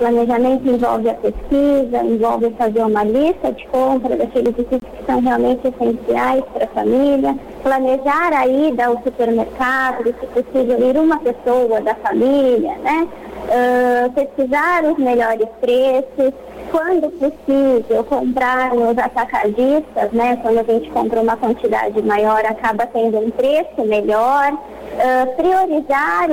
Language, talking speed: Portuguese, 130 wpm